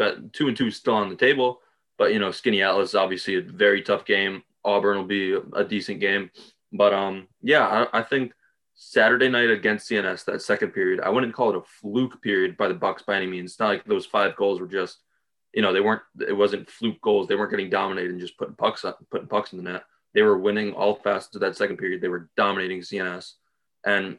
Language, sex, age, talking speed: English, male, 20-39, 235 wpm